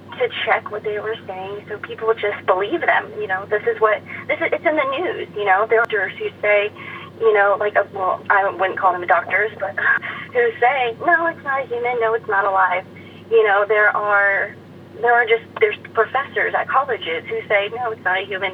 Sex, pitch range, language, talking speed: female, 195-230 Hz, English, 225 wpm